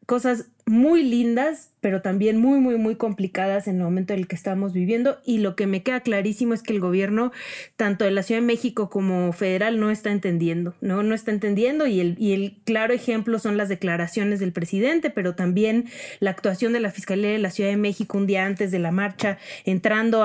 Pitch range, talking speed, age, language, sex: 190-230 Hz, 215 wpm, 30-49, Spanish, female